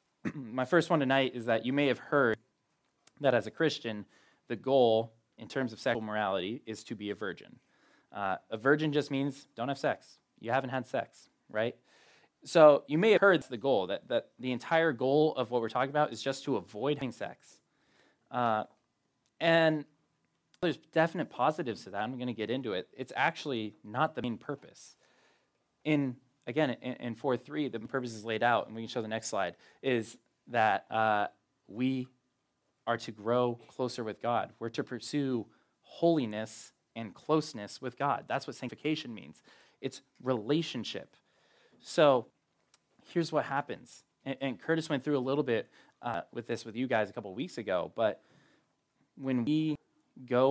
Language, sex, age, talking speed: English, male, 20-39, 175 wpm